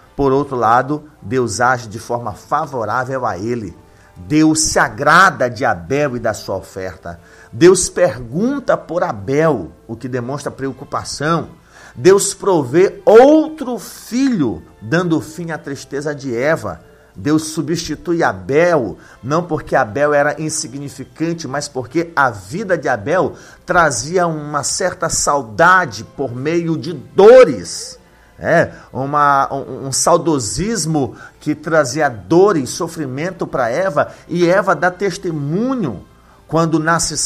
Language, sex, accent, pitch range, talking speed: Portuguese, male, Brazilian, 130-170 Hz, 125 wpm